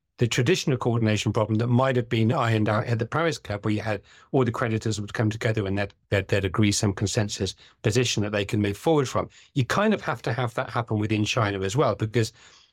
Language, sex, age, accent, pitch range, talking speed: English, male, 40-59, British, 105-125 Hz, 235 wpm